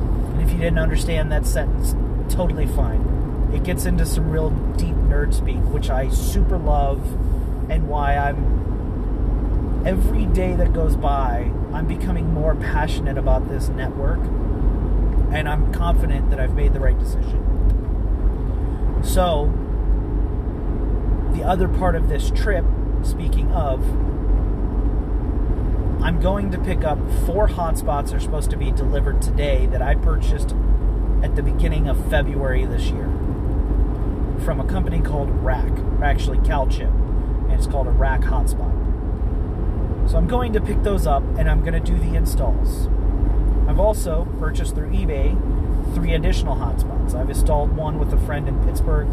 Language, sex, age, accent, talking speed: English, male, 30-49, American, 145 wpm